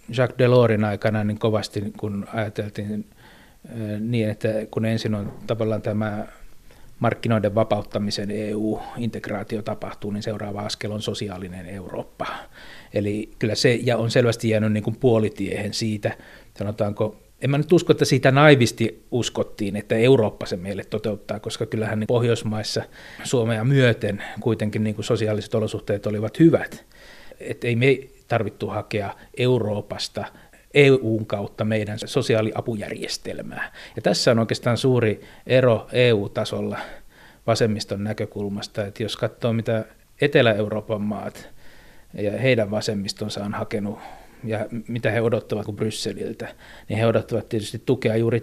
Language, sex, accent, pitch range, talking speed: Finnish, male, native, 105-120 Hz, 130 wpm